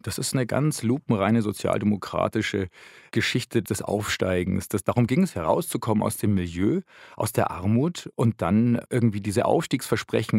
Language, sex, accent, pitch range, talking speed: German, male, German, 100-120 Hz, 140 wpm